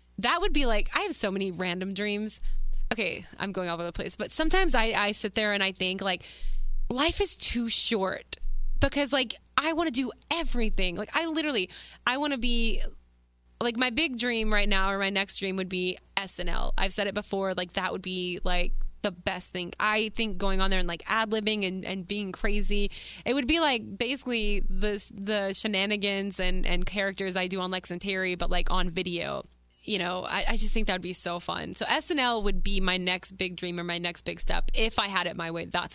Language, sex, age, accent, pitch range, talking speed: English, female, 20-39, American, 180-215 Hz, 225 wpm